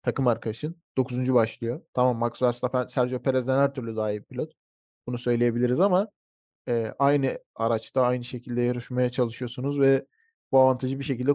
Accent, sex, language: native, male, Turkish